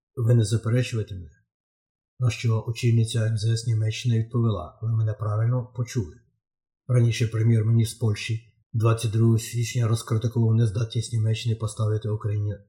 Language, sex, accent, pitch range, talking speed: Ukrainian, male, native, 110-120 Hz, 130 wpm